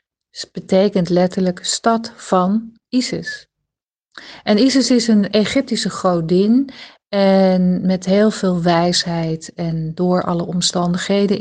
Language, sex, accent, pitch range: Dutch, female, Dutch, 175-205 Hz